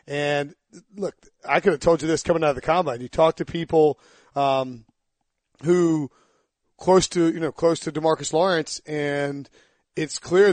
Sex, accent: male, American